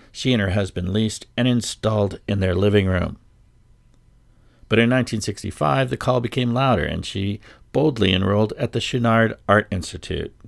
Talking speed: 155 wpm